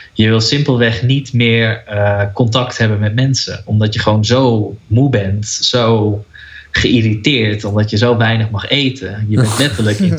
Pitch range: 105-125 Hz